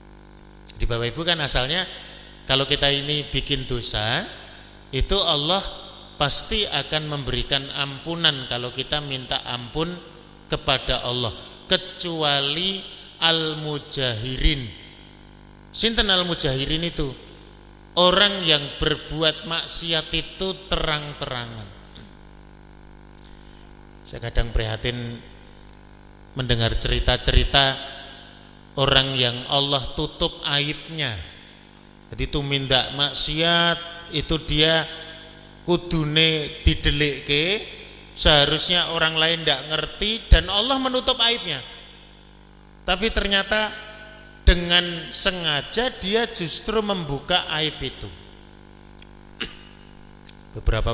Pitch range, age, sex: 130-170 Hz, 30-49, male